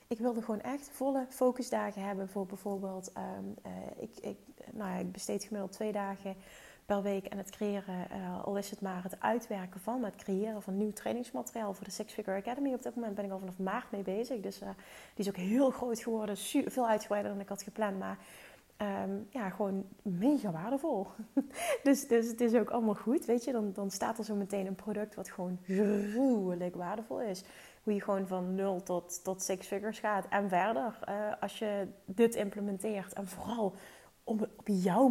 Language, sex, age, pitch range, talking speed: Dutch, female, 30-49, 195-225 Hz, 210 wpm